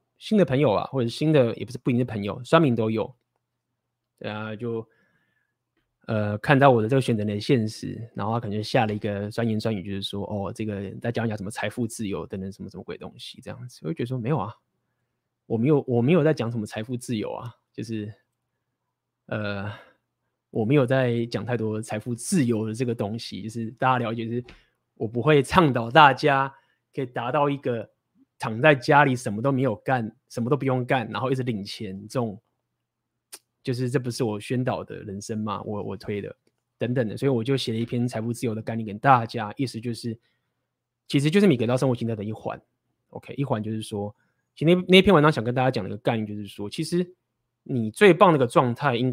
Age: 20-39